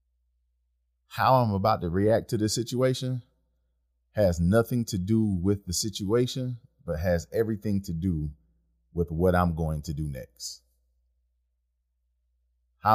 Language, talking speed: English, 130 wpm